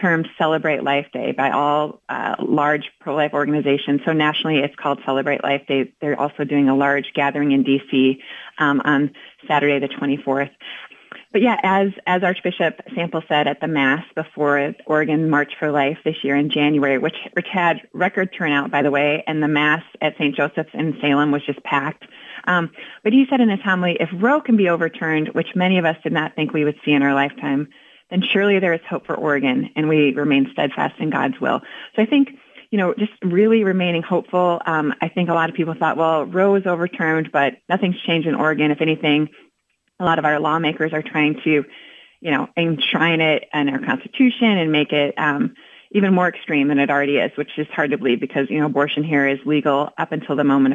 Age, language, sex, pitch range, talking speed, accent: 30-49, English, female, 145-175 Hz, 210 wpm, American